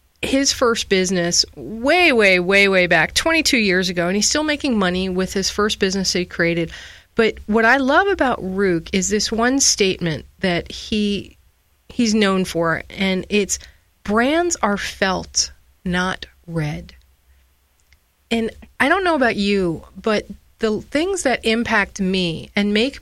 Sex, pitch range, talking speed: female, 185-245 Hz, 150 wpm